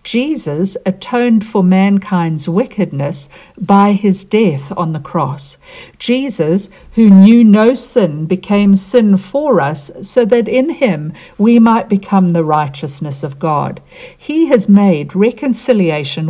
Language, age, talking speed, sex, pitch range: English, 60-79, 130 wpm, female, 165-220 Hz